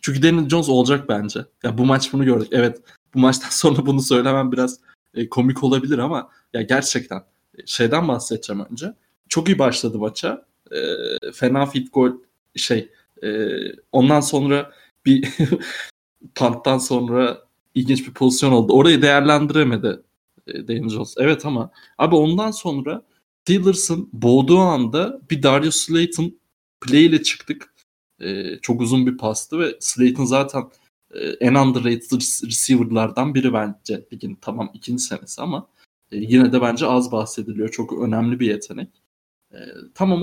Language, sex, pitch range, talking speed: Turkish, male, 120-155 Hz, 140 wpm